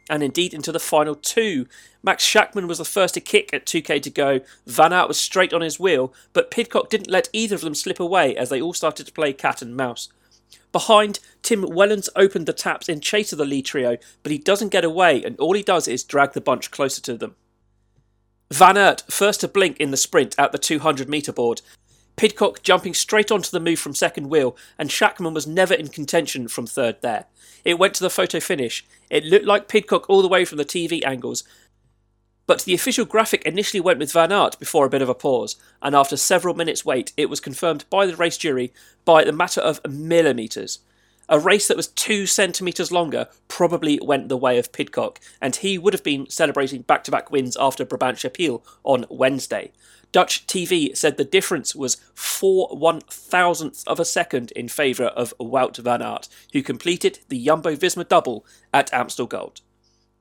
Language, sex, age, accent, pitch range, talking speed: English, male, 40-59, British, 130-195 Hz, 200 wpm